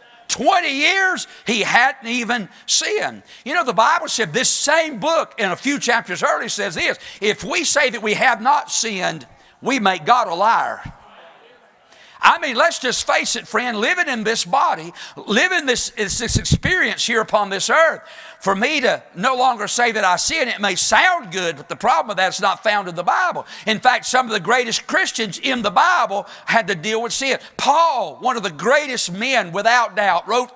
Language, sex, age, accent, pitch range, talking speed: English, male, 50-69, American, 210-275 Hz, 200 wpm